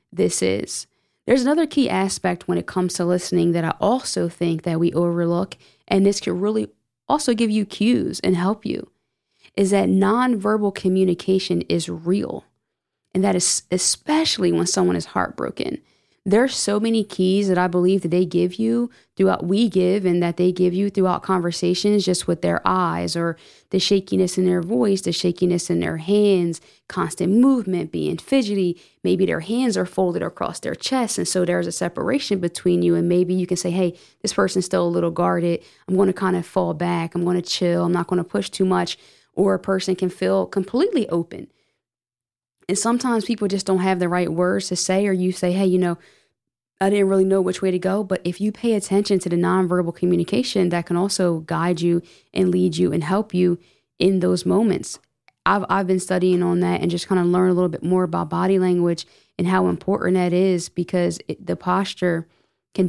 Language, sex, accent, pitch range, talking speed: English, female, American, 175-195 Hz, 200 wpm